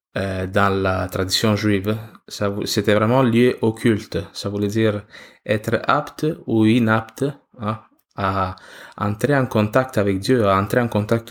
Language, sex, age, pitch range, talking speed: French, male, 20-39, 100-130 Hz, 150 wpm